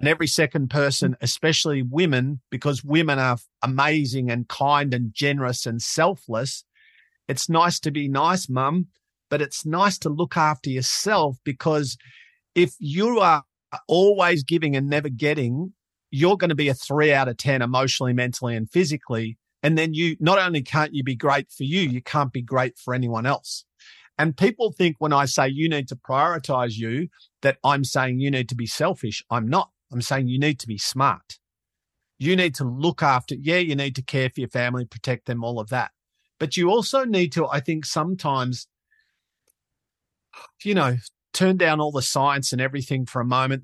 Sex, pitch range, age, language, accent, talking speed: male, 125-160 Hz, 50-69, English, Australian, 185 wpm